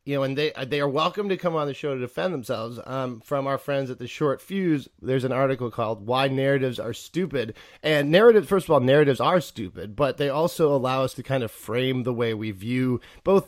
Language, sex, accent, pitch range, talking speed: English, male, American, 125-150 Hz, 235 wpm